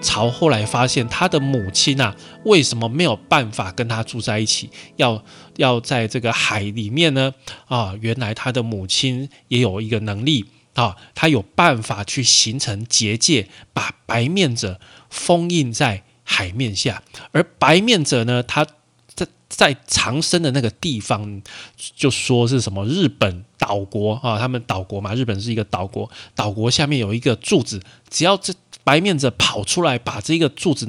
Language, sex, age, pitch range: Chinese, male, 20-39, 110-140 Hz